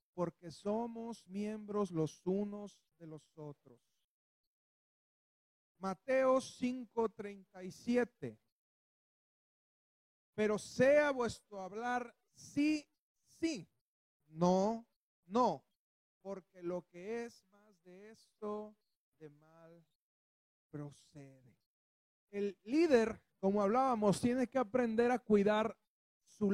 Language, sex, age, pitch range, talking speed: Spanish, male, 40-59, 175-230 Hz, 85 wpm